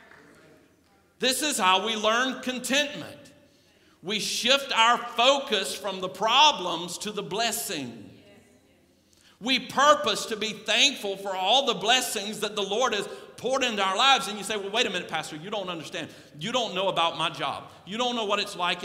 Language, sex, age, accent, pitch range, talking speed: English, male, 50-69, American, 155-220 Hz, 180 wpm